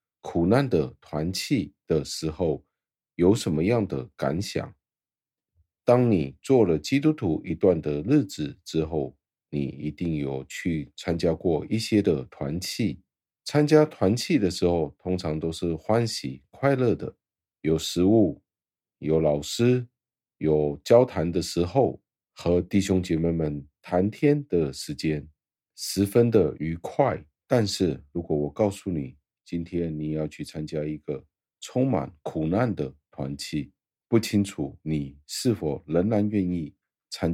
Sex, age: male, 50-69